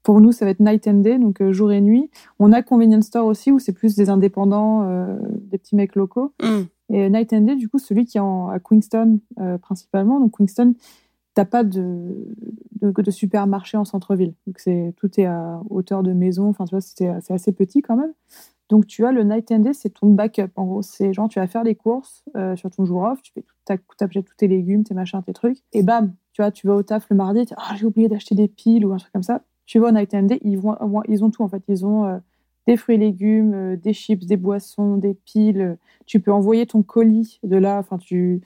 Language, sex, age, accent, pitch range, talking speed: French, female, 20-39, French, 195-220 Hz, 245 wpm